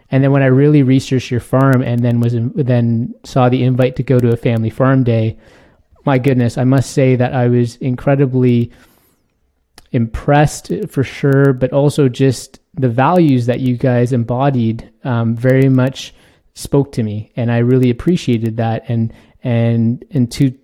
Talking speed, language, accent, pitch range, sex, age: 170 wpm, English, American, 120-135 Hz, male, 20-39